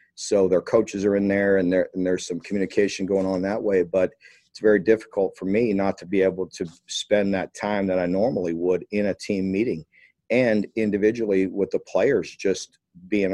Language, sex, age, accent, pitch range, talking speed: English, male, 50-69, American, 85-95 Hz, 200 wpm